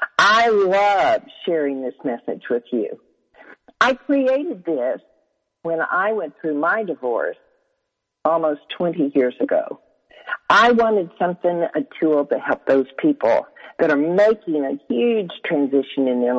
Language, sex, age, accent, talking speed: English, female, 50-69, American, 135 wpm